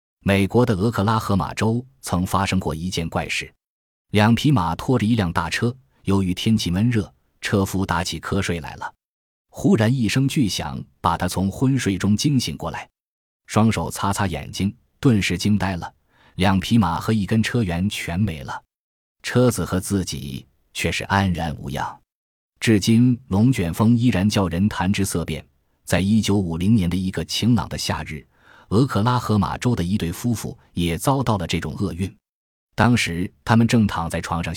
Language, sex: Chinese, male